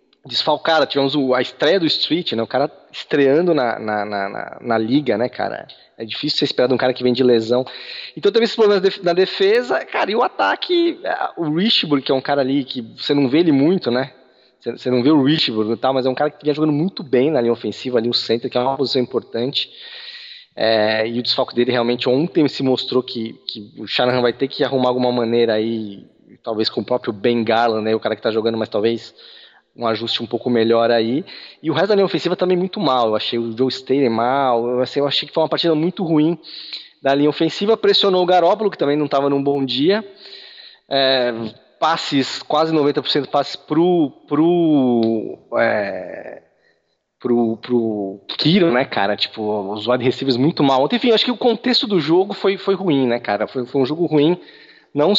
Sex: male